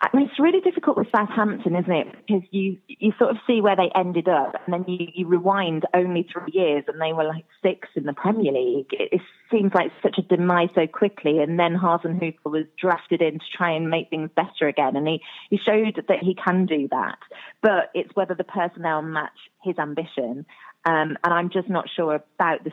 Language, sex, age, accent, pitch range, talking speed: English, female, 20-39, British, 155-190 Hz, 220 wpm